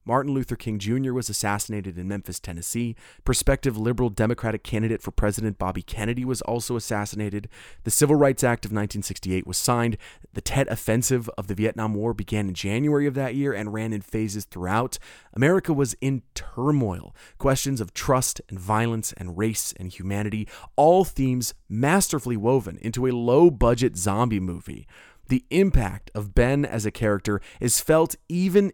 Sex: male